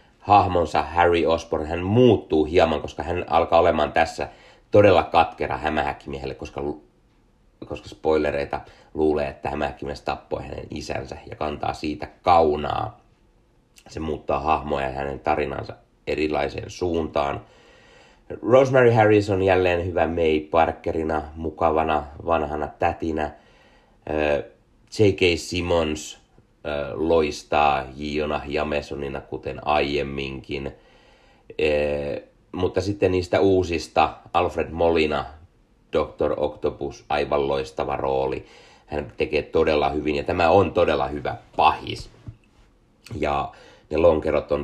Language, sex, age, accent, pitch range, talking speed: Finnish, male, 30-49, native, 70-85 Hz, 105 wpm